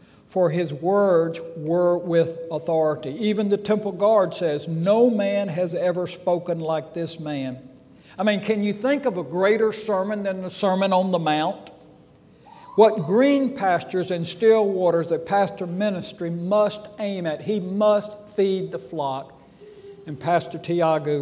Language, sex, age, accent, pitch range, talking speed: English, male, 60-79, American, 165-210 Hz, 155 wpm